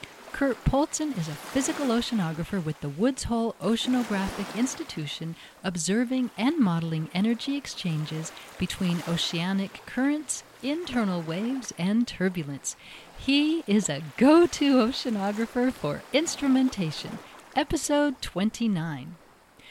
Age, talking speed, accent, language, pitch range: 50-69, 105 wpm, American, English, 160-235 Hz